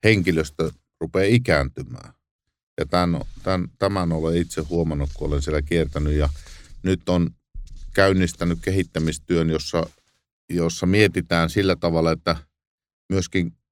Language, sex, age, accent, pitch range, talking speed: Finnish, male, 50-69, native, 80-90 Hz, 115 wpm